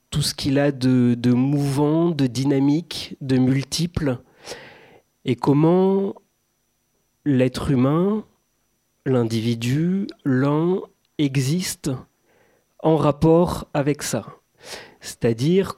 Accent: French